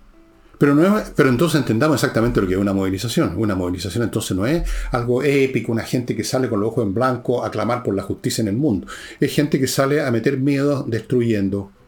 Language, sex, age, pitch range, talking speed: Spanish, male, 50-69, 105-135 Hz, 220 wpm